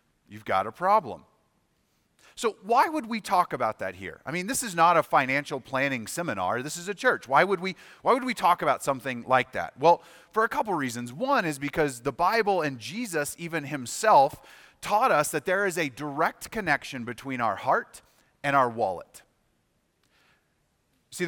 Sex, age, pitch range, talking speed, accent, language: male, 30-49, 125-180 Hz, 185 wpm, American, English